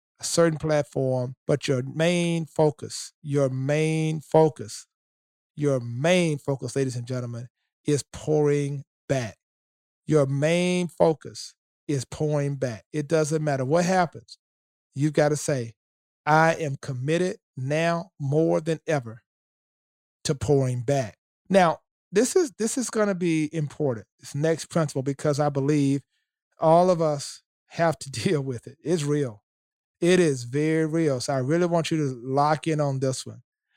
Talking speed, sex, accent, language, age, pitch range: 150 wpm, male, American, English, 40-59, 135-165 Hz